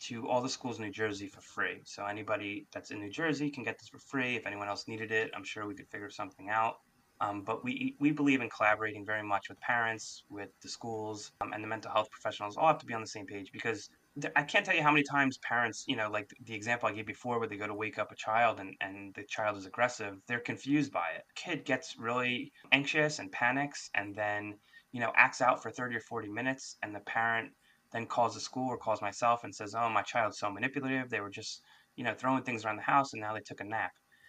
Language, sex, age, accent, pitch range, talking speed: English, male, 20-39, American, 105-130 Hz, 255 wpm